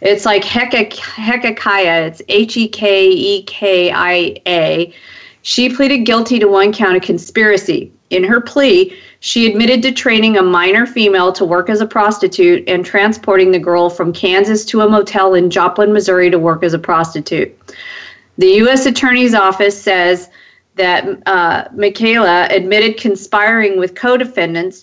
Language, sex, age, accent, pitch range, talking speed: English, female, 40-59, American, 180-225 Hz, 140 wpm